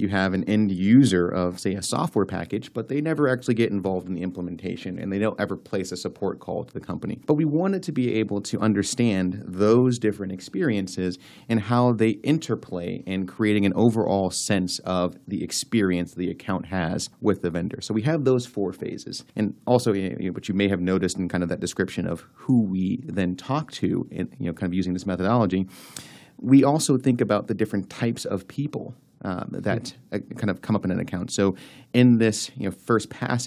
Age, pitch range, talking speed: 30-49, 90-115 Hz, 210 wpm